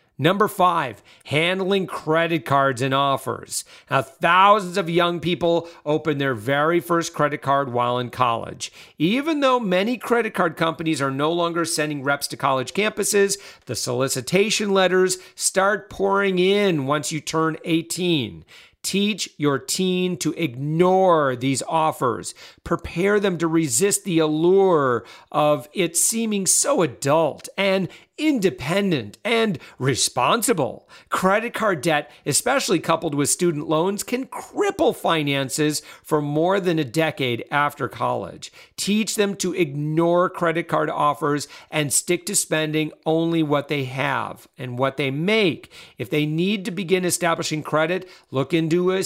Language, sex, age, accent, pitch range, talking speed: English, male, 40-59, American, 150-190 Hz, 140 wpm